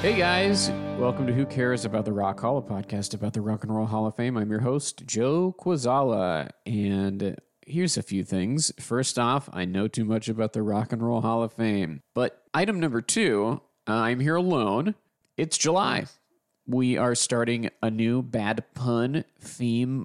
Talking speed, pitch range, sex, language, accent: 180 wpm, 110-145 Hz, male, English, American